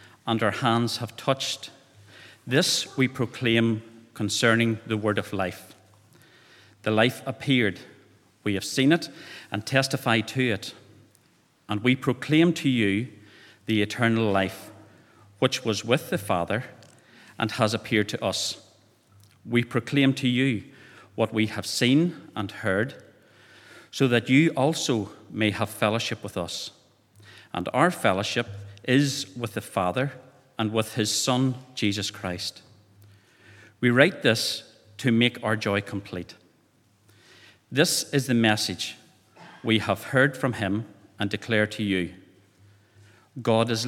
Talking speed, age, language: 135 wpm, 40-59, English